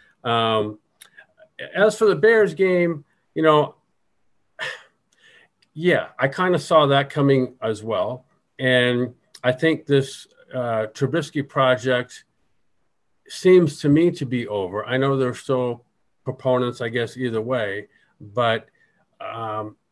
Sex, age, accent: male, 50-69, American